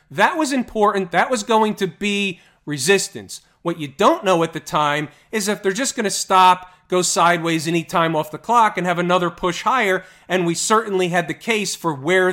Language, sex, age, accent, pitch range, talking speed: English, male, 40-59, American, 160-205 Hz, 210 wpm